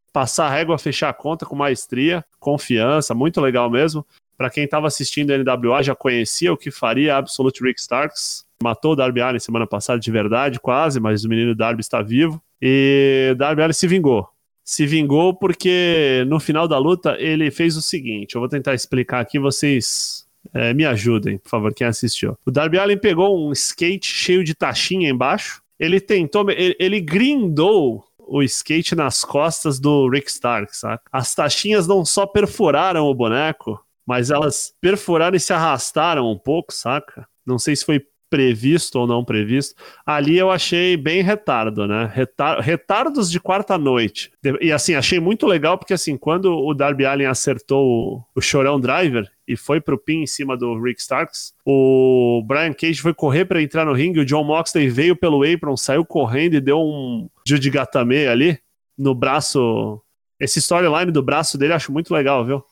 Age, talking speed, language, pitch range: 20-39, 180 wpm, Portuguese, 130-165 Hz